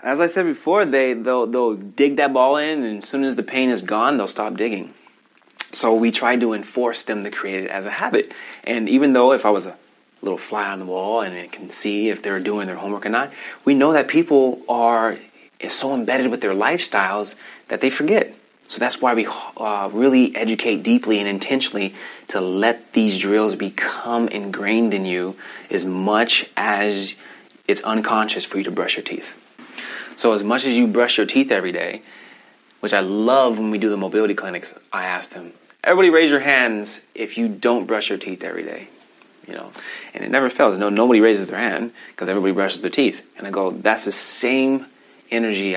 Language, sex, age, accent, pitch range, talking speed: English, male, 30-49, American, 100-125 Hz, 205 wpm